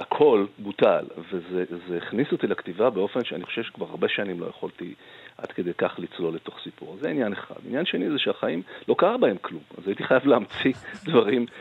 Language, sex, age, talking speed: Hebrew, male, 40-59, 185 wpm